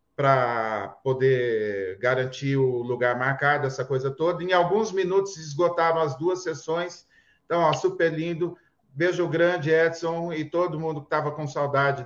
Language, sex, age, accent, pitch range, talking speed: Portuguese, male, 40-59, Brazilian, 135-170 Hz, 145 wpm